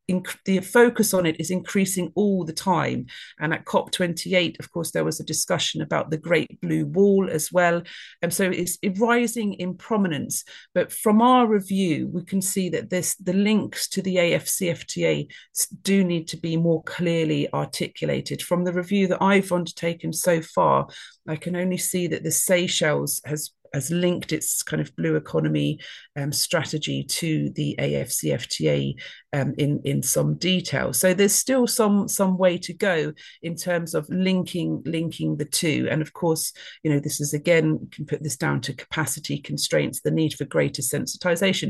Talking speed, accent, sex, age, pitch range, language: 175 wpm, British, female, 40-59, 155-190 Hz, English